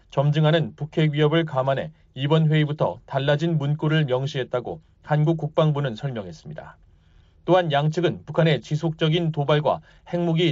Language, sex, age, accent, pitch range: Korean, male, 30-49, native, 140-165 Hz